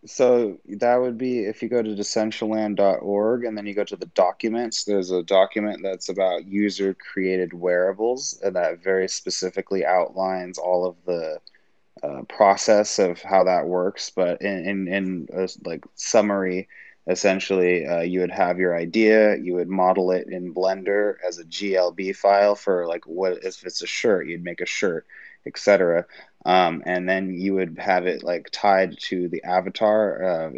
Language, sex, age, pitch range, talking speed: English, male, 20-39, 90-105 Hz, 170 wpm